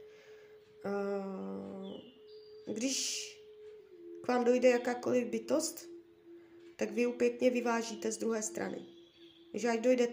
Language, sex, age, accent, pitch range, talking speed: Czech, female, 20-39, native, 220-340 Hz, 100 wpm